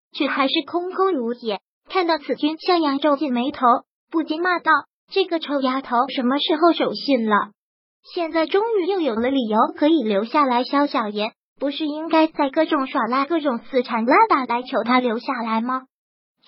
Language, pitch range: Chinese, 255-325 Hz